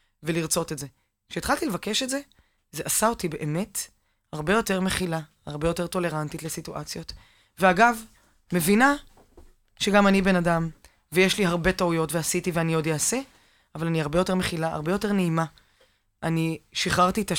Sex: female